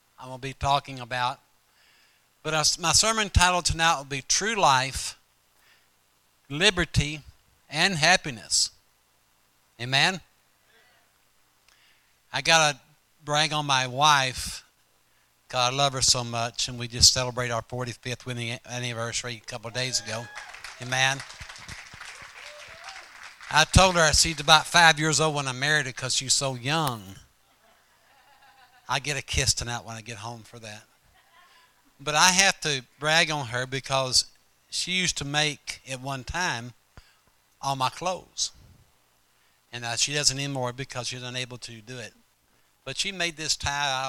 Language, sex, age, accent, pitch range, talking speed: English, male, 60-79, American, 120-150 Hz, 150 wpm